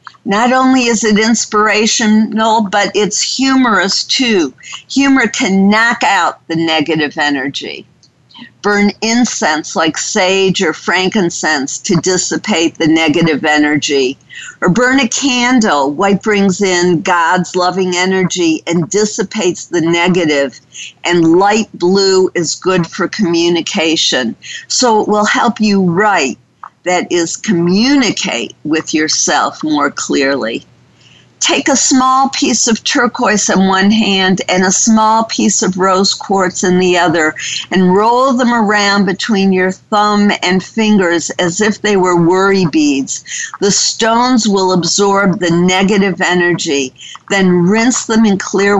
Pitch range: 175-220 Hz